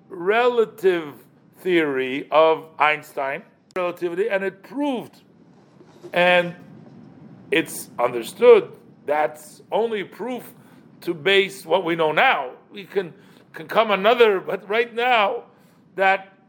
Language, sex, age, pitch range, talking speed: English, male, 50-69, 175-225 Hz, 105 wpm